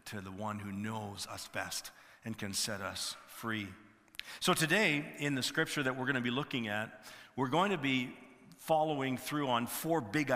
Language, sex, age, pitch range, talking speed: English, male, 50-69, 125-165 Hz, 190 wpm